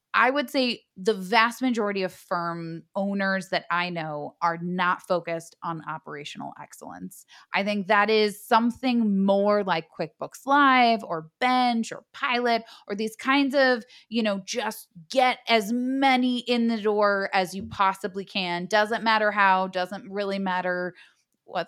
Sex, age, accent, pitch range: female, 20-39, American, 180-230 Hz